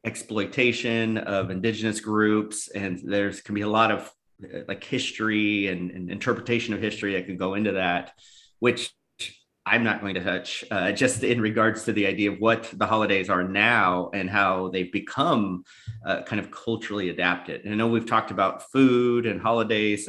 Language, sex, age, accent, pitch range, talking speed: English, male, 30-49, American, 90-110 Hz, 180 wpm